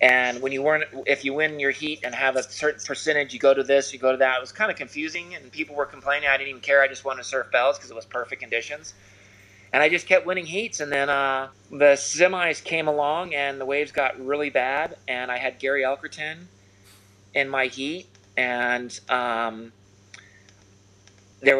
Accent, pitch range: American, 110-150 Hz